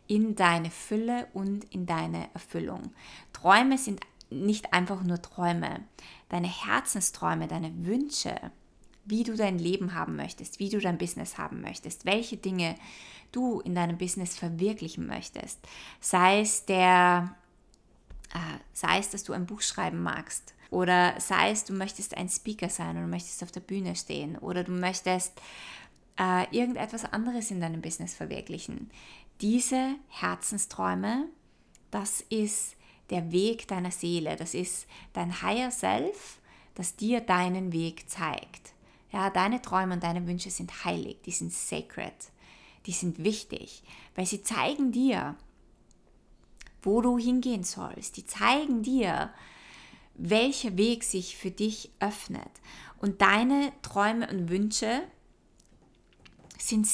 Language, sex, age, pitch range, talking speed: German, female, 20-39, 180-225 Hz, 130 wpm